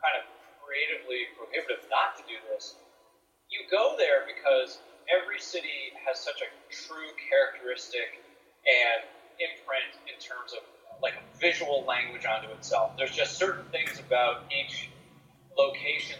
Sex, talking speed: male, 135 wpm